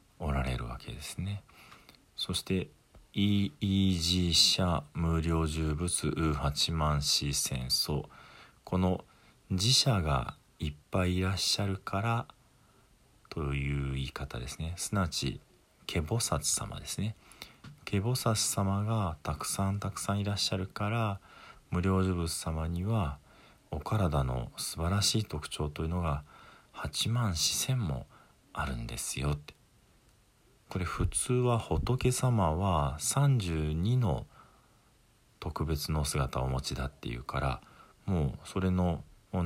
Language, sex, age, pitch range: Japanese, male, 40-59, 75-105 Hz